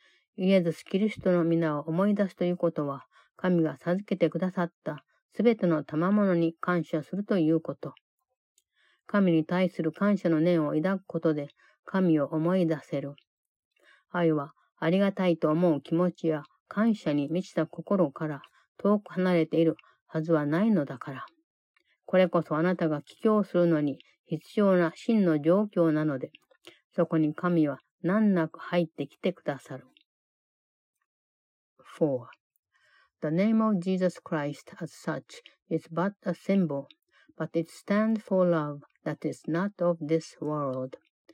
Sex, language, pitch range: female, Japanese, 155-195 Hz